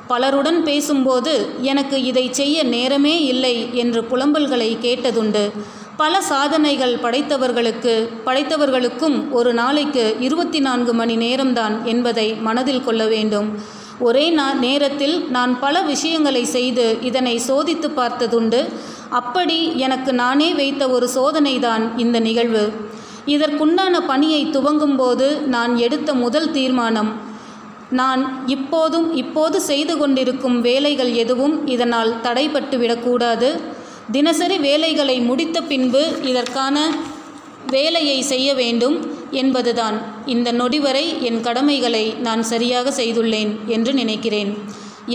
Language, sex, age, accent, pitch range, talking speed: Tamil, female, 30-49, native, 235-285 Hz, 100 wpm